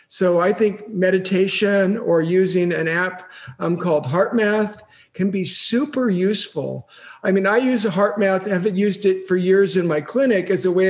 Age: 50-69